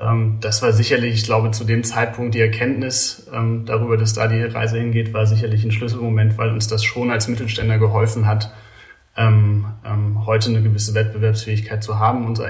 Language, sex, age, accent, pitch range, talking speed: German, male, 30-49, German, 110-115 Hz, 170 wpm